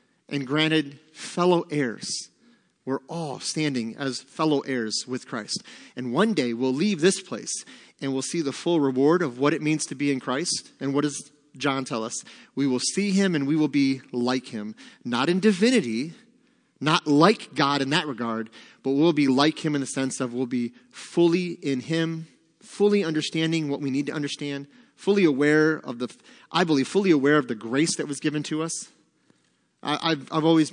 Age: 30-49